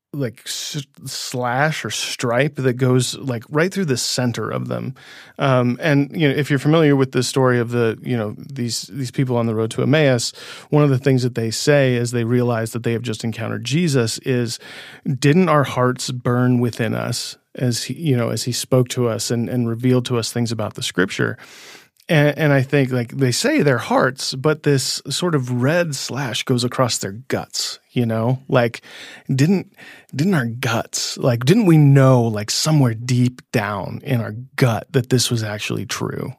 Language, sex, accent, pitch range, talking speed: English, male, American, 120-145 Hz, 195 wpm